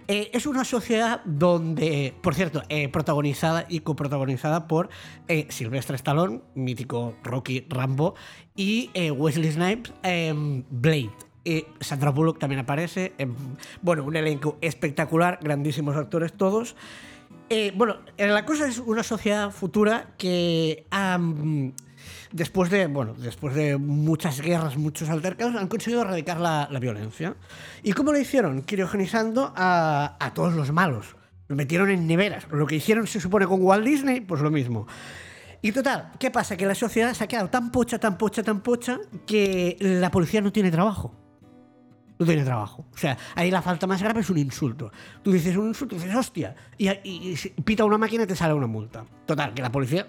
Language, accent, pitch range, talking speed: Spanish, Spanish, 145-200 Hz, 170 wpm